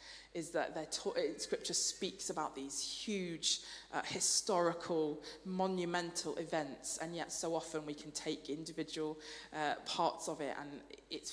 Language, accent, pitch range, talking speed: English, British, 155-200 Hz, 130 wpm